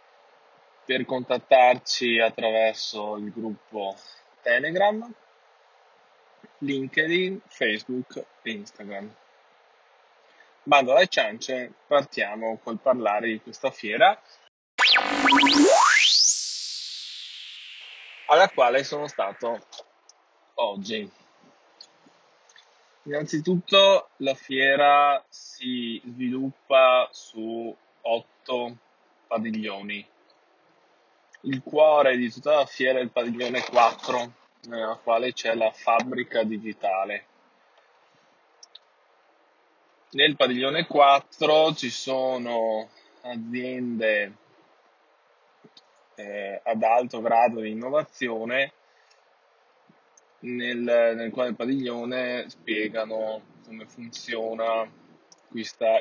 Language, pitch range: Italian, 110-135 Hz